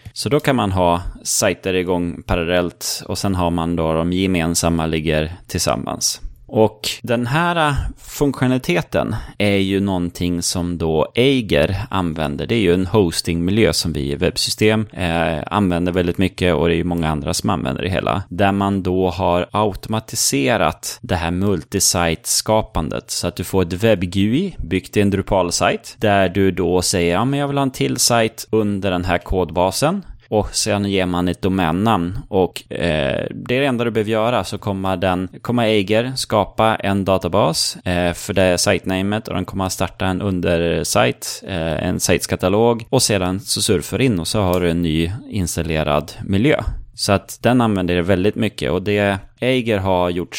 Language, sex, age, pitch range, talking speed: Swedish, male, 30-49, 85-110 Hz, 175 wpm